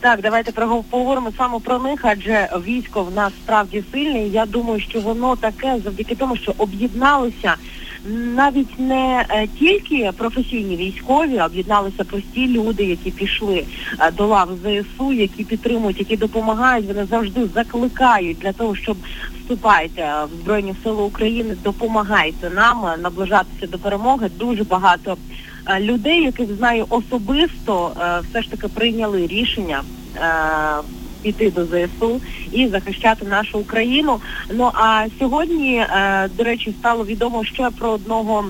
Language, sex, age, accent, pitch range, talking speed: Ukrainian, female, 30-49, native, 200-240 Hz, 130 wpm